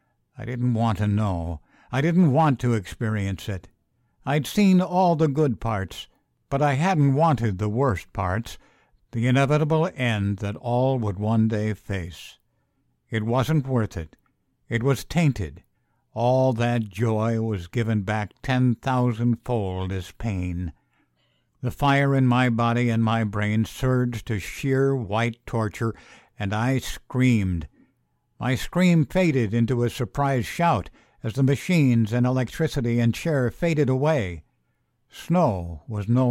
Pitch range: 105-135 Hz